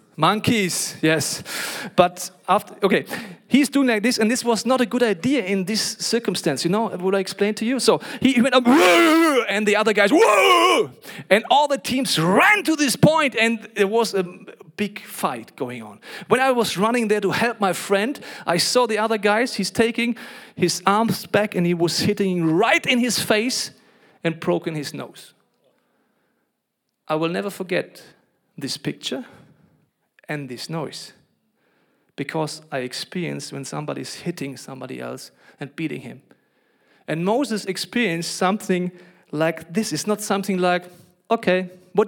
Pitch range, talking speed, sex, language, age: 165-220 Hz, 165 wpm, male, English, 40-59